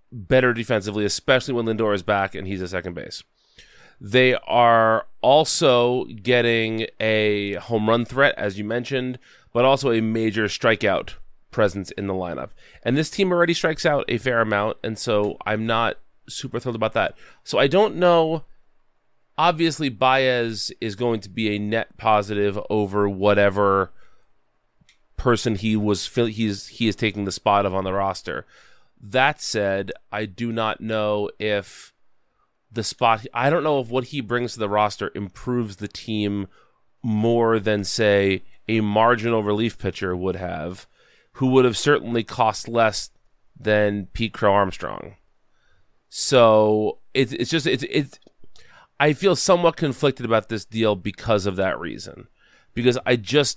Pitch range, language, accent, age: 105-125 Hz, English, American, 30-49